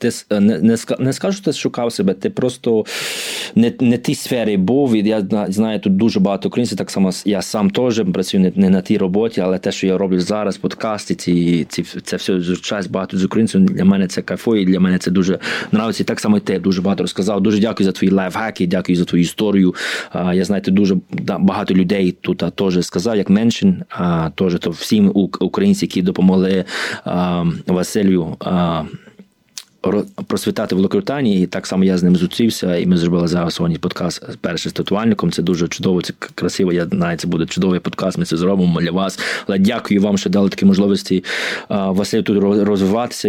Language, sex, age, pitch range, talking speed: Ukrainian, male, 20-39, 90-110 Hz, 190 wpm